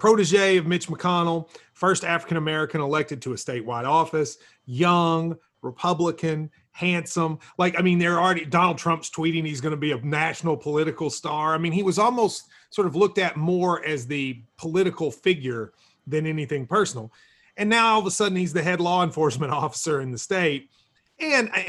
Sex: male